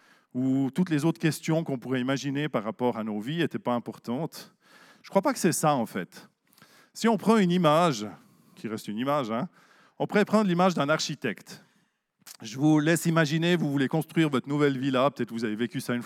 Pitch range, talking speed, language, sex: 130-185 Hz, 215 wpm, French, male